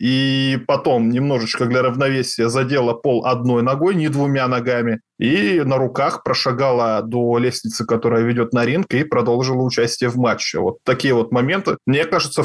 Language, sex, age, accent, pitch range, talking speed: Russian, male, 20-39, native, 120-140 Hz, 160 wpm